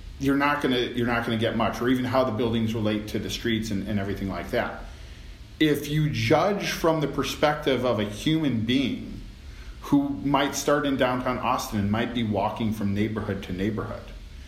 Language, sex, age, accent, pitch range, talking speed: English, male, 40-59, American, 105-125 Hz, 190 wpm